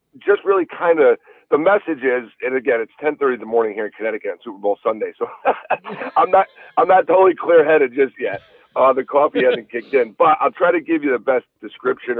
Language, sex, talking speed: English, male, 230 wpm